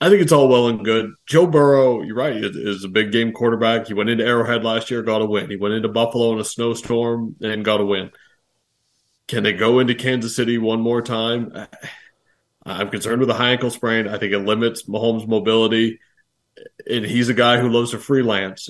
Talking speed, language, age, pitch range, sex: 210 wpm, English, 30-49, 105-125 Hz, male